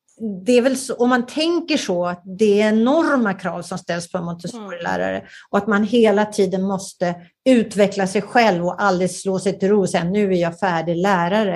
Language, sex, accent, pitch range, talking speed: Swedish, female, native, 180-215 Hz, 200 wpm